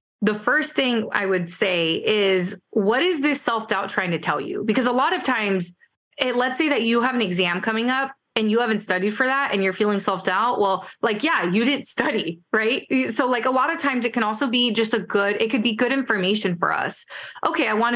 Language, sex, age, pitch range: English, female, 20-39, 195-255 Hz